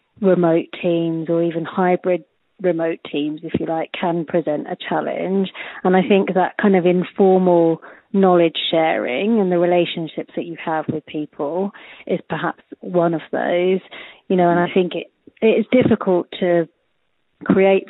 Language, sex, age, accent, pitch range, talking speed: English, female, 30-49, British, 165-185 Hz, 160 wpm